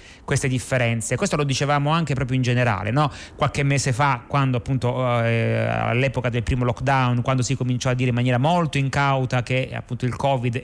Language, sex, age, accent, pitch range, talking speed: Italian, male, 30-49, native, 120-145 Hz, 190 wpm